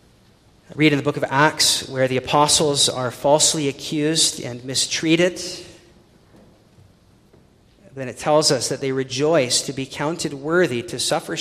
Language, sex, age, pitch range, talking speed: English, male, 40-59, 130-155 Hz, 140 wpm